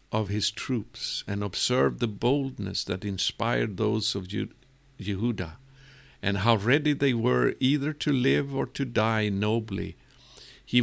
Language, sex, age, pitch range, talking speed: English, male, 50-69, 105-135 Hz, 140 wpm